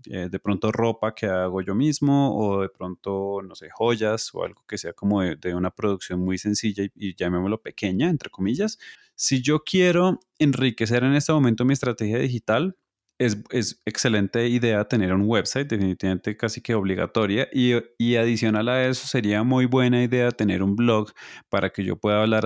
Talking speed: 185 wpm